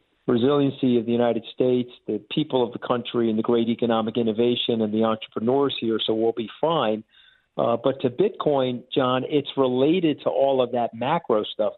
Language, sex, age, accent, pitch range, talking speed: English, male, 50-69, American, 115-130 Hz, 185 wpm